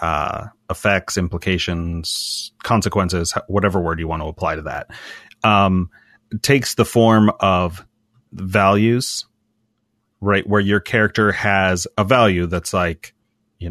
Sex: male